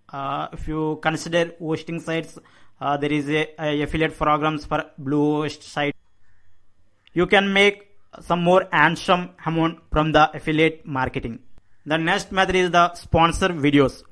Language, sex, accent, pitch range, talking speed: English, male, Indian, 145-170 Hz, 140 wpm